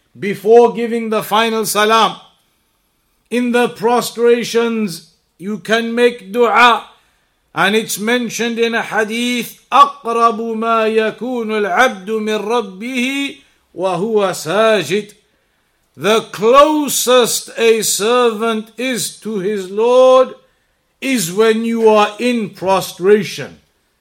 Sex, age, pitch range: male, 50-69, 210-245 Hz